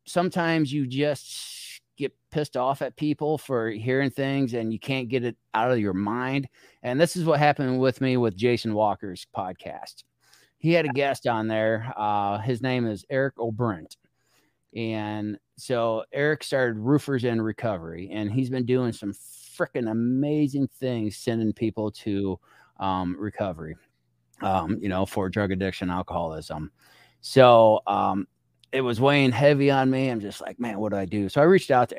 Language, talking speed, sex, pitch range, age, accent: English, 170 wpm, male, 95-130 Hz, 30-49, American